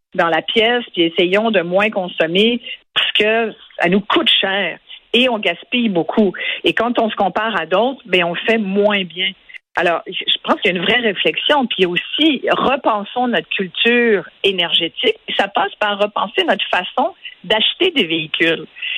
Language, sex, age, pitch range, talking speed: French, female, 50-69, 180-240 Hz, 170 wpm